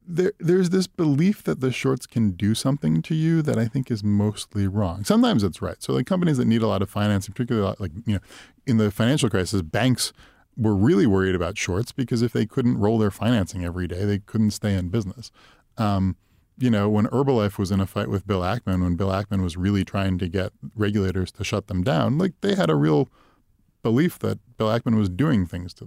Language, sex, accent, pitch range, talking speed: English, male, American, 95-120 Hz, 225 wpm